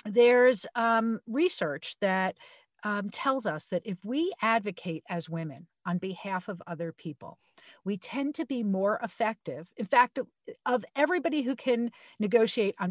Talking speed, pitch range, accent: 150 wpm, 175-230 Hz, American